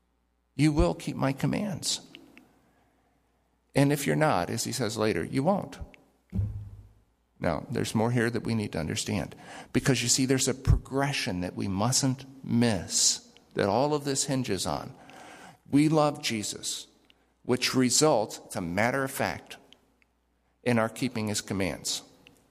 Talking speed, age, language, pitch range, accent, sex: 140 wpm, 50-69, English, 100-145 Hz, American, male